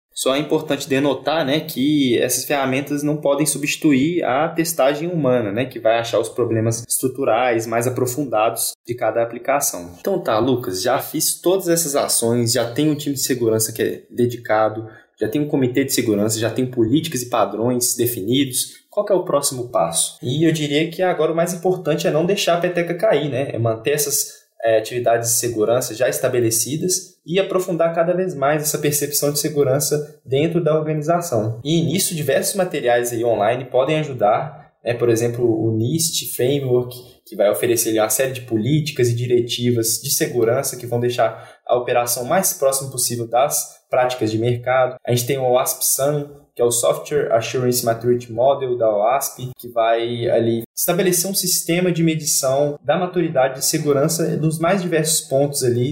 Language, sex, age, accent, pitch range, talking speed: Portuguese, male, 10-29, Brazilian, 120-155 Hz, 175 wpm